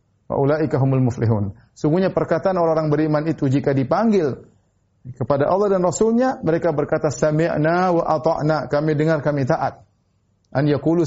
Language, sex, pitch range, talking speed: Indonesian, male, 125-165 Hz, 130 wpm